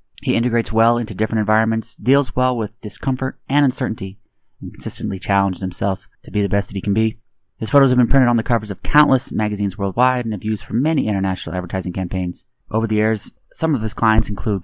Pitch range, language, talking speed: 105-125 Hz, English, 215 wpm